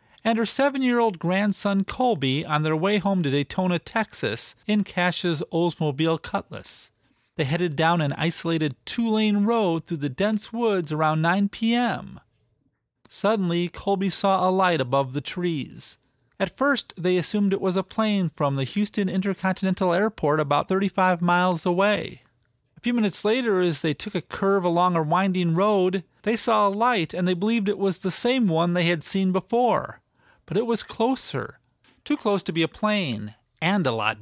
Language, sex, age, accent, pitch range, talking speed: English, male, 40-59, American, 155-210 Hz, 170 wpm